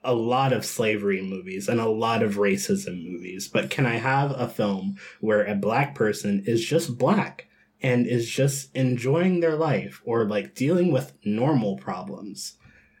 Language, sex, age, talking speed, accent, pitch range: English, male, 20-39, 165 wpm, American, 100-130 Hz